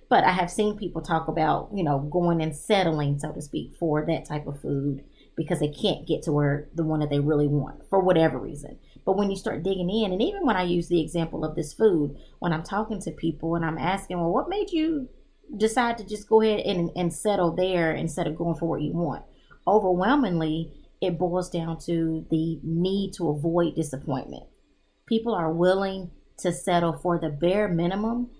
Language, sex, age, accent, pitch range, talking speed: English, female, 30-49, American, 160-195 Hz, 205 wpm